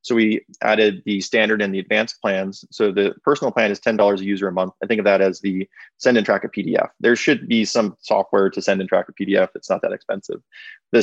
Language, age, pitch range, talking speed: English, 20-39, 95-115 Hz, 250 wpm